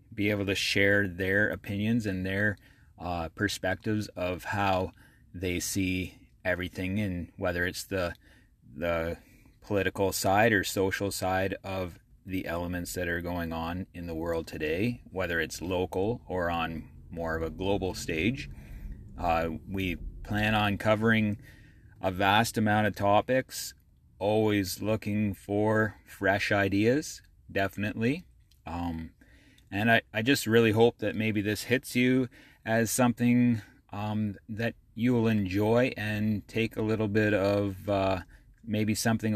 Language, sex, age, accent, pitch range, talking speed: English, male, 30-49, American, 90-110 Hz, 135 wpm